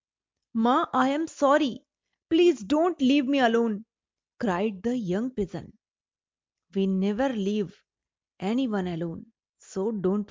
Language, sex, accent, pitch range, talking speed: English, female, Indian, 200-295 Hz, 115 wpm